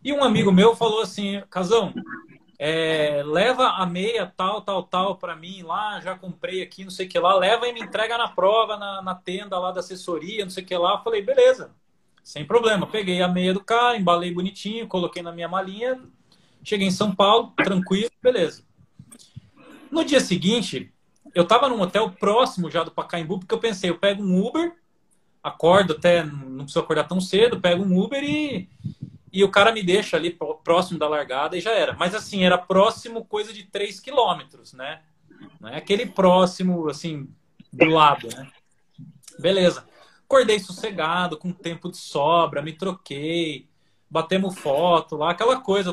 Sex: male